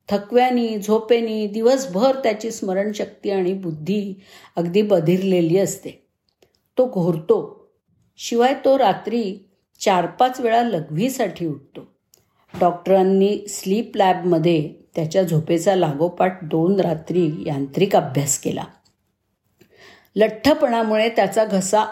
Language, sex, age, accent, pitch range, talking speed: Marathi, female, 50-69, native, 175-225 Hz, 75 wpm